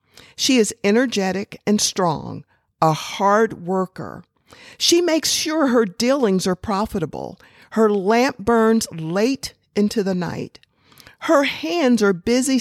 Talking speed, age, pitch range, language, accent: 125 wpm, 50-69, 195-250 Hz, English, American